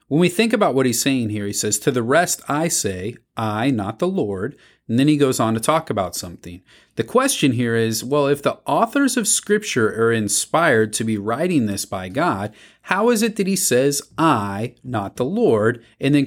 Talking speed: 215 wpm